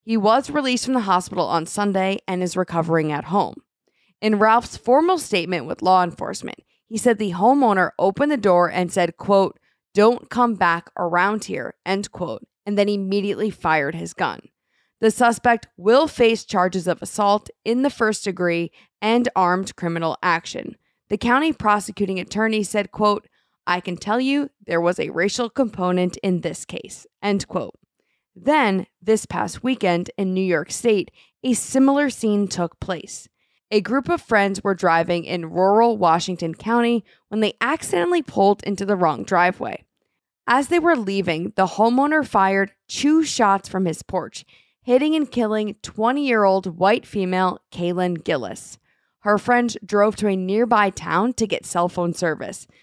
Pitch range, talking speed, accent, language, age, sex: 180-230 Hz, 160 wpm, American, English, 20-39, female